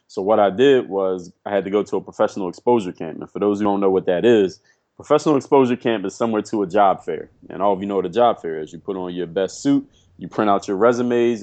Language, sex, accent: English, male, American